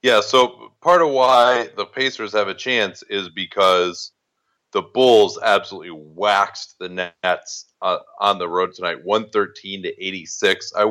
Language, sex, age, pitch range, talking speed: English, male, 30-49, 95-130 Hz, 145 wpm